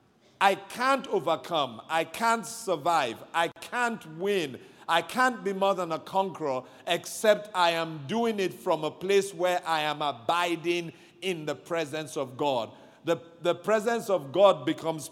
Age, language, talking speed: 50-69, English, 155 wpm